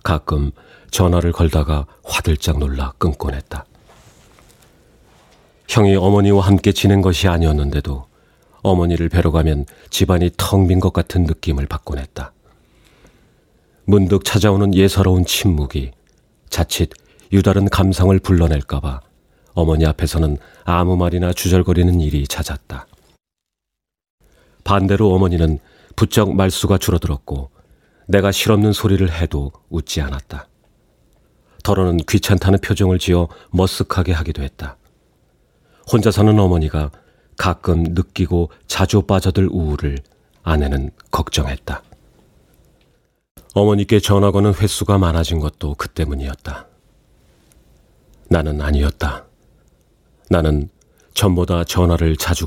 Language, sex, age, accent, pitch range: Korean, male, 40-59, native, 75-95 Hz